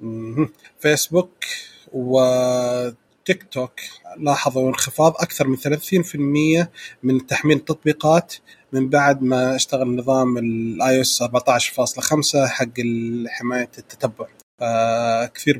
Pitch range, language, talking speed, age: 125-155 Hz, Arabic, 90 wpm, 30-49